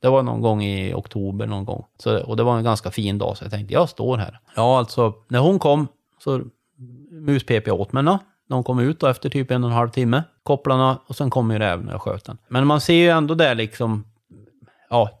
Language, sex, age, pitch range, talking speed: Swedish, male, 30-49, 110-135 Hz, 235 wpm